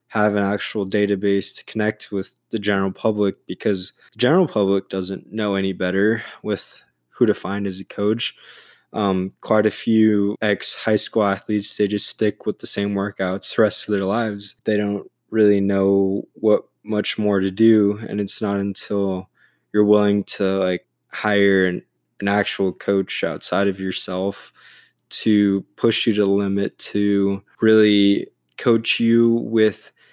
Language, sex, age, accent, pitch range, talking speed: English, male, 20-39, American, 95-105 Hz, 160 wpm